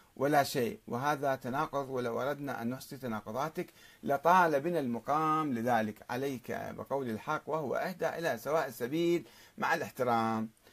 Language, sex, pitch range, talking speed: Arabic, male, 120-165 Hz, 130 wpm